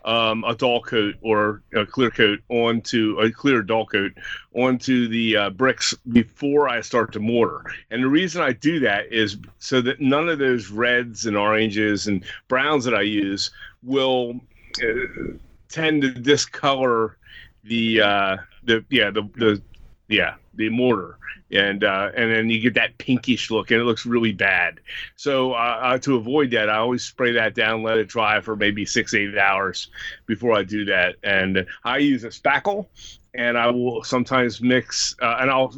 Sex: male